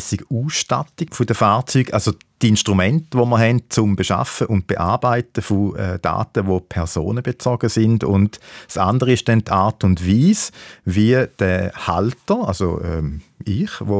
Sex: male